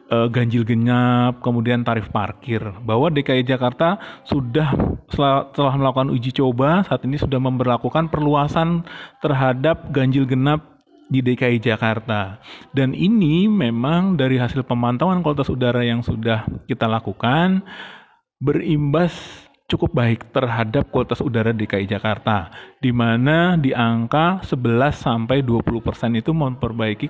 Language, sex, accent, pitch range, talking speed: Indonesian, male, native, 115-150 Hz, 115 wpm